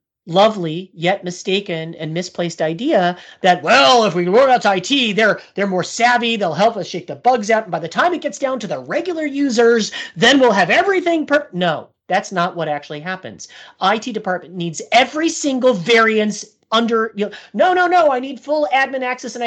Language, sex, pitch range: English, male, 180-245 Hz